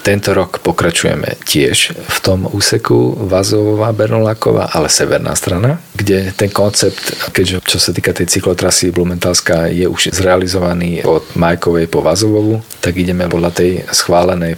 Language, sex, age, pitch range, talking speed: Slovak, male, 40-59, 85-100 Hz, 140 wpm